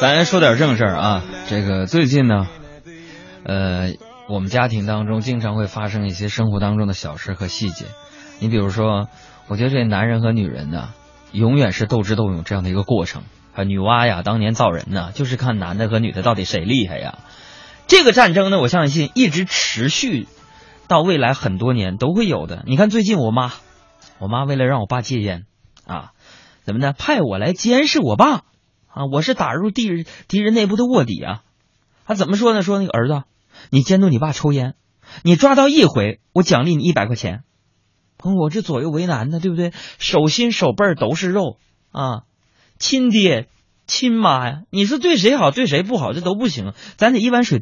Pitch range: 105-175 Hz